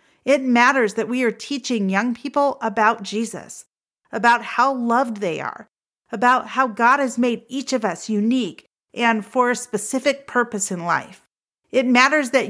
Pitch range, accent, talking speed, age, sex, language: 200-260 Hz, American, 165 wpm, 40-59, female, English